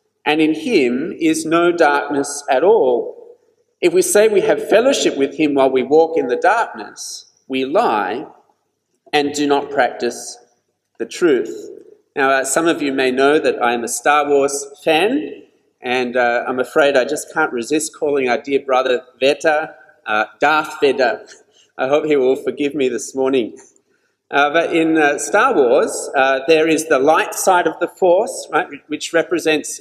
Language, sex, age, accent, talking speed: English, male, 40-59, Australian, 170 wpm